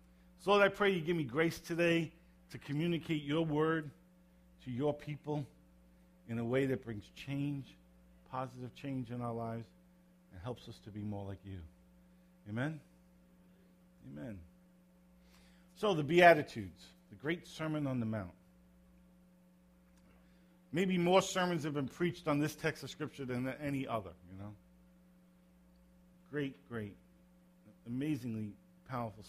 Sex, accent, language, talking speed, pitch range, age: male, American, English, 135 wpm, 130-180 Hz, 40-59